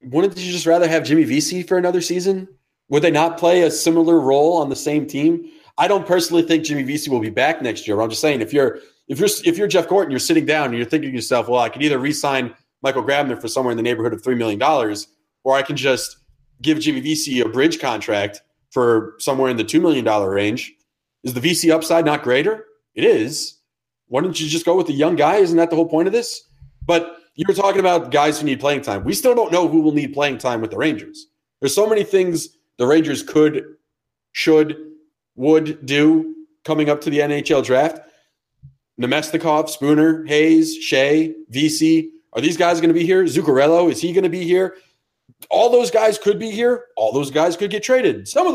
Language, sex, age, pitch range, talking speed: English, male, 30-49, 145-195 Hz, 220 wpm